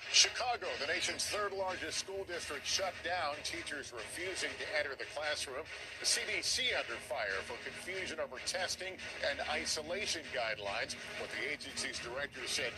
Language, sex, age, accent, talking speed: English, male, 50-69, American, 145 wpm